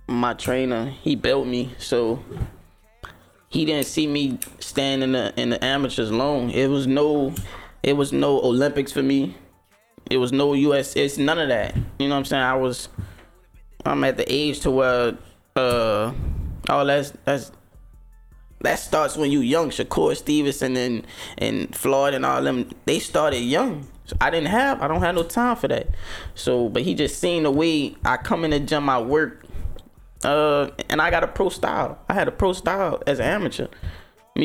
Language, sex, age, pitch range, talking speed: English, male, 20-39, 115-140 Hz, 190 wpm